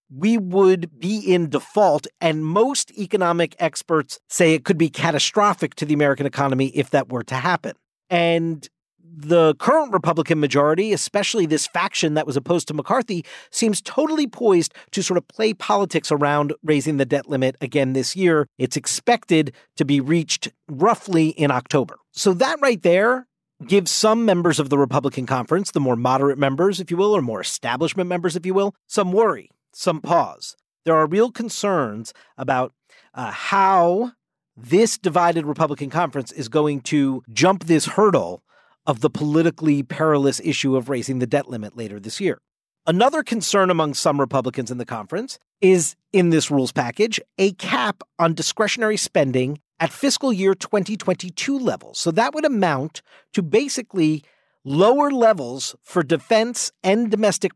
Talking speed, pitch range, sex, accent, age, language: 160 wpm, 145-200 Hz, male, American, 50-69, English